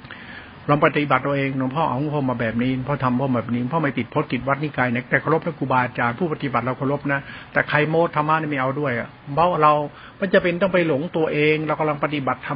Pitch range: 130-155 Hz